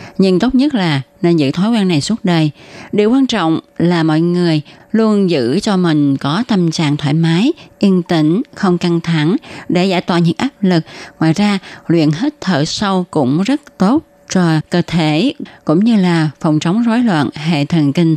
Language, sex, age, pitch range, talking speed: Vietnamese, female, 20-39, 160-205 Hz, 195 wpm